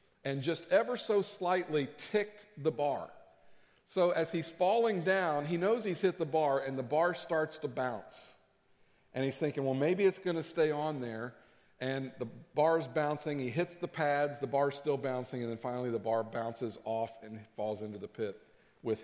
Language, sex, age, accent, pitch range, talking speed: English, male, 50-69, American, 125-165 Hz, 190 wpm